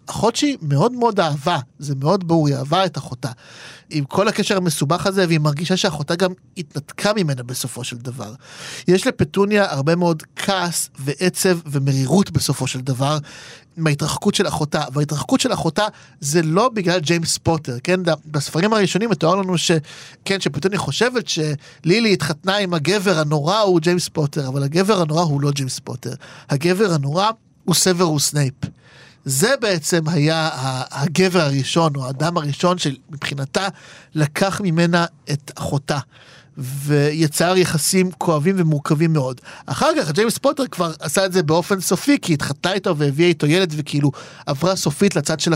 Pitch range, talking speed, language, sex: 145-185 Hz, 150 wpm, Hebrew, male